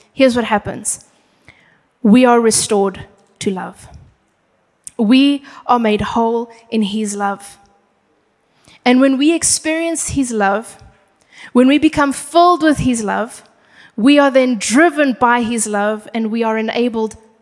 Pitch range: 215-270 Hz